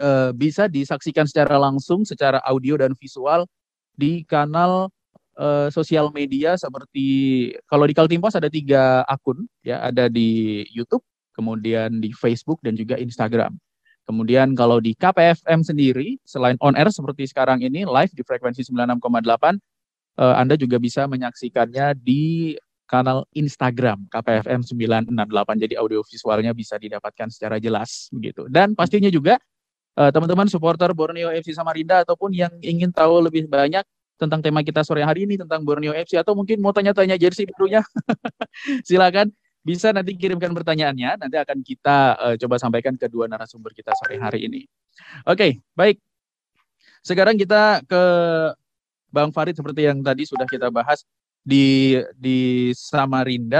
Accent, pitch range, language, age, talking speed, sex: native, 125-170 Hz, Indonesian, 20-39, 145 wpm, male